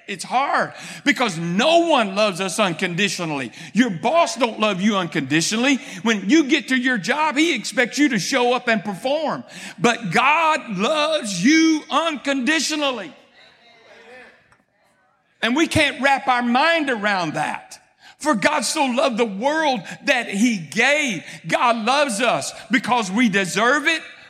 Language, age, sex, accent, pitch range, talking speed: English, 50-69, male, American, 220-295 Hz, 140 wpm